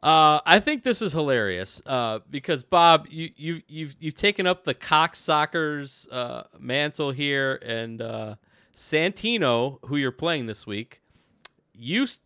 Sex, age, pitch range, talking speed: male, 20-39, 115-155 Hz, 145 wpm